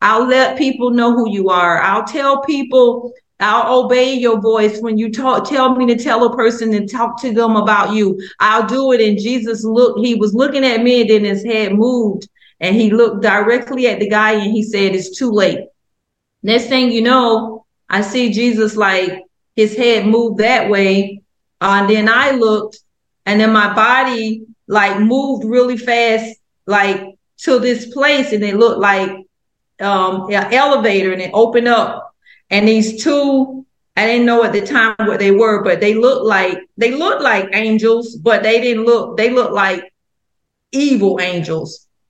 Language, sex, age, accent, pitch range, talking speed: English, female, 40-59, American, 205-240 Hz, 180 wpm